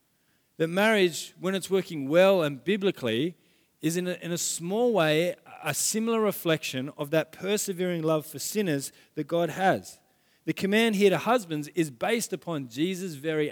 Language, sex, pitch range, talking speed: English, male, 150-195 Hz, 165 wpm